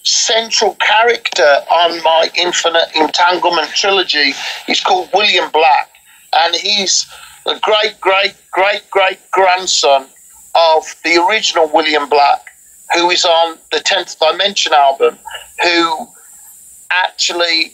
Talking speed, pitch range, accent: 110 wpm, 160-210 Hz, British